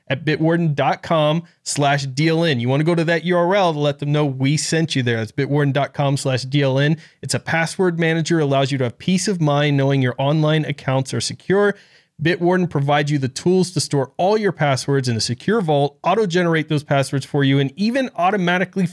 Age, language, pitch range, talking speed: 30-49, English, 140-170 Hz, 195 wpm